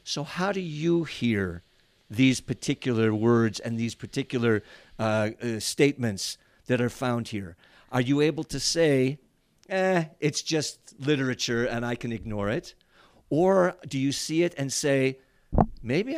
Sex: male